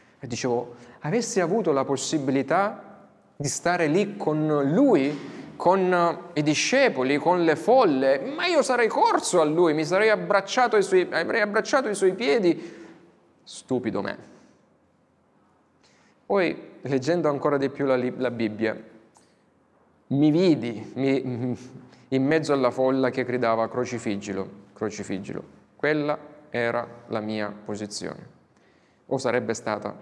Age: 30-49